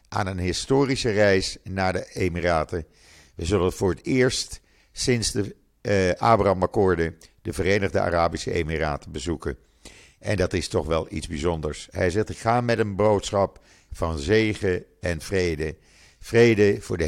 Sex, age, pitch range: male, 50-69, 85-105 Hz